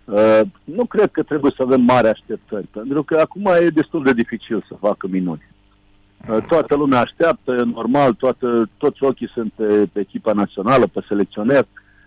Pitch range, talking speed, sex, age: 105-140 Hz, 170 wpm, male, 50-69